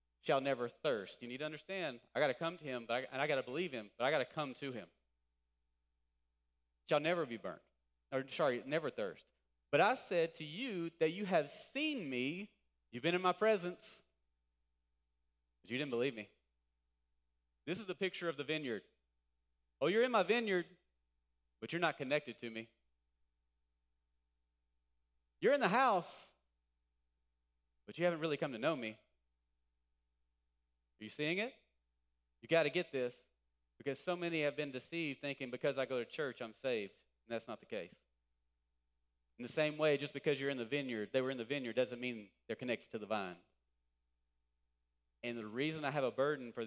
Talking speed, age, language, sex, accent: 185 wpm, 30-49, English, male, American